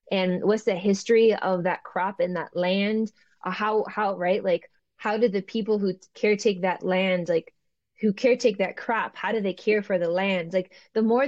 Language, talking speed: English, 200 wpm